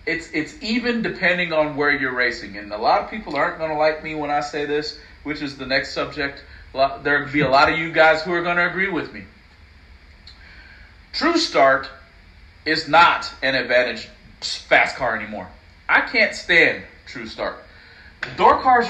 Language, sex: English, male